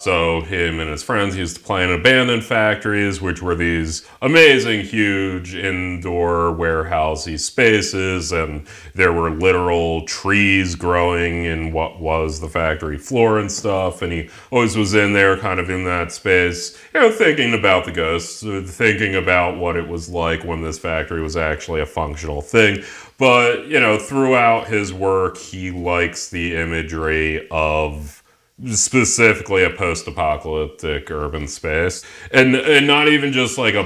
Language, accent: English, American